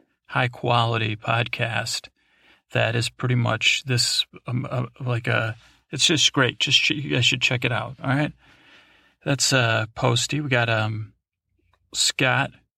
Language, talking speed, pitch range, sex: English, 155 wpm, 115-130 Hz, male